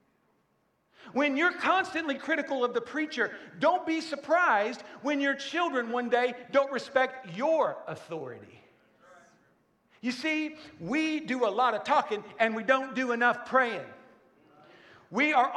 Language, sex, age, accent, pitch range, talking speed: English, male, 50-69, American, 210-270 Hz, 135 wpm